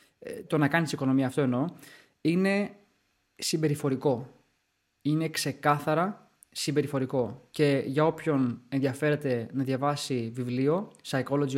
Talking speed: 100 wpm